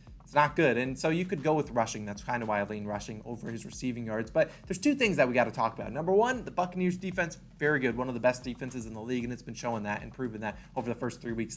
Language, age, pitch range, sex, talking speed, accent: English, 20-39, 120-160 Hz, male, 300 wpm, American